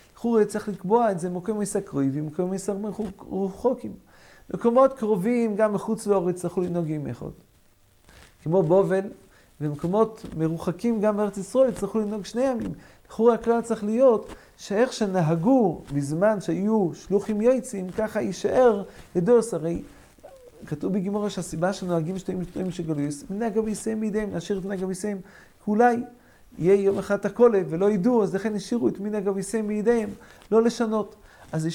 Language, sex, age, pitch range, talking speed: English, male, 40-59, 180-220 Hz, 150 wpm